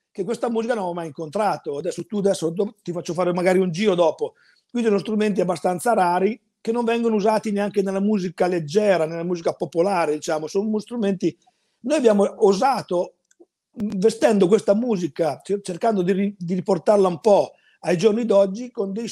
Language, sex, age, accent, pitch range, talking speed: Italian, male, 50-69, native, 175-215 Hz, 165 wpm